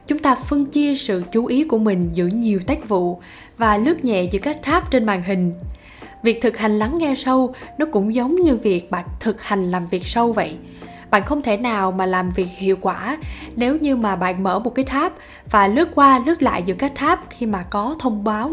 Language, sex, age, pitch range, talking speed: Vietnamese, female, 10-29, 195-260 Hz, 225 wpm